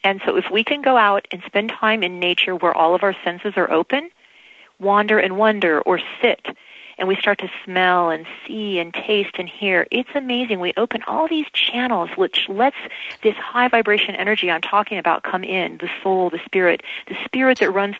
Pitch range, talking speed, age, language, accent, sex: 185-245 Hz, 205 wpm, 40-59, English, American, female